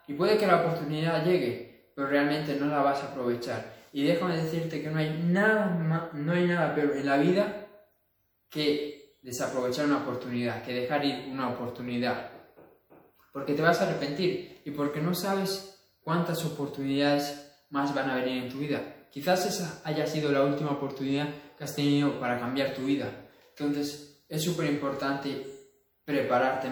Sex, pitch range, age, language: male, 130-155 Hz, 20-39, Spanish